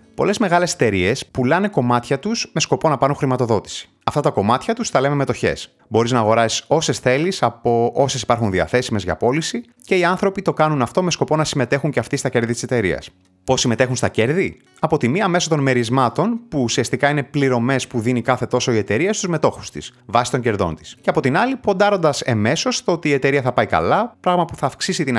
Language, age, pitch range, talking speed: Greek, 30-49, 110-155 Hz, 215 wpm